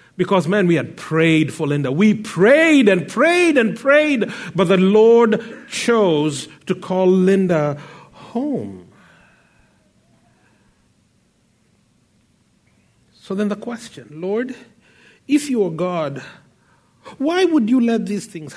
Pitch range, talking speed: 185-245 Hz, 115 wpm